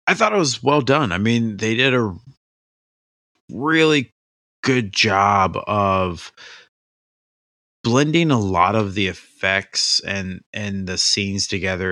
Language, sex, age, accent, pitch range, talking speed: English, male, 20-39, American, 90-110 Hz, 130 wpm